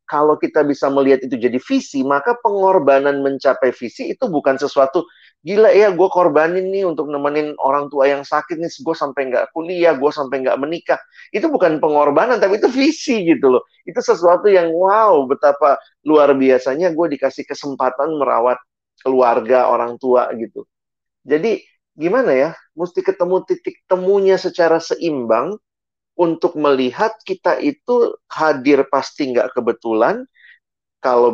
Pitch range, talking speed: 130-190 Hz, 145 wpm